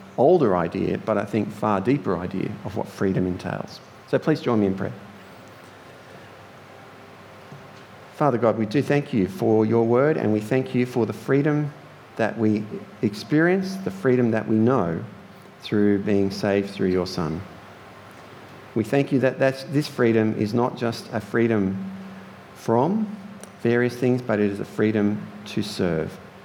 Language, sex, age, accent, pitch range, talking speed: English, male, 50-69, Australian, 105-130 Hz, 155 wpm